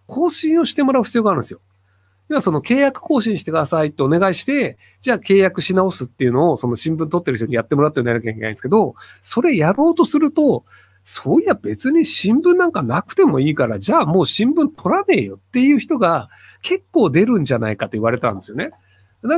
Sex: male